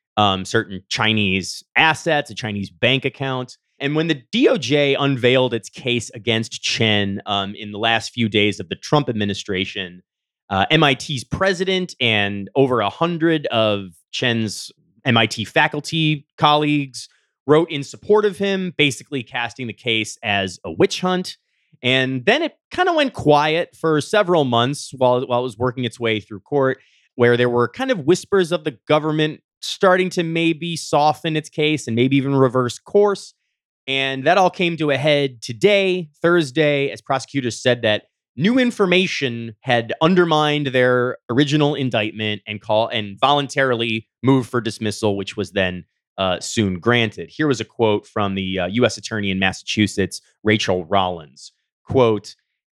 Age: 30-49